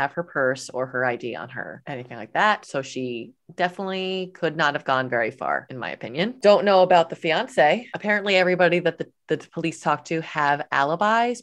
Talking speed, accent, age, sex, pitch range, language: 200 wpm, American, 30-49, female, 140-175 Hz, English